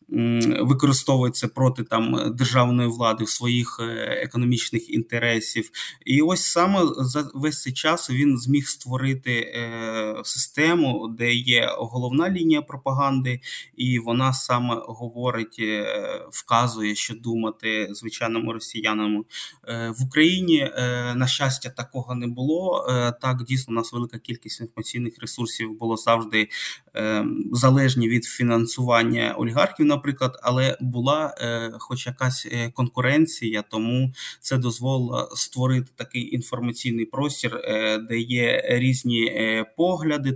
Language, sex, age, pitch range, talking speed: Ukrainian, male, 20-39, 115-130 Hz, 120 wpm